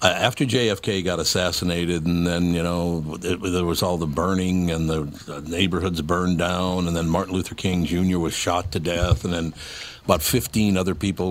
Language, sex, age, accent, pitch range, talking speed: English, male, 60-79, American, 85-100 Hz, 190 wpm